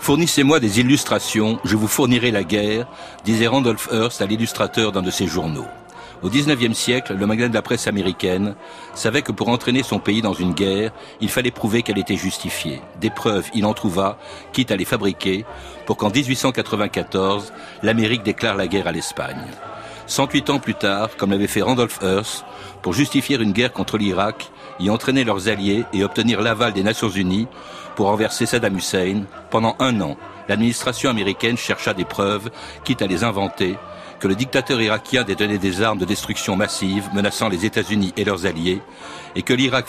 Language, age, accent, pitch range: French, 60-79, French, 100-120 Hz